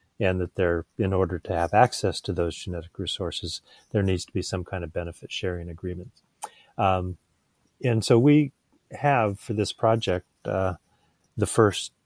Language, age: English, 30-49